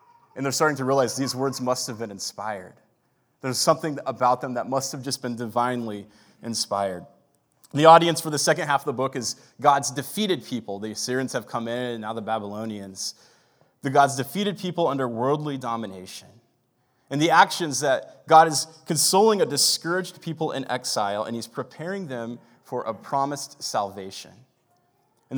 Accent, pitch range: American, 115-150 Hz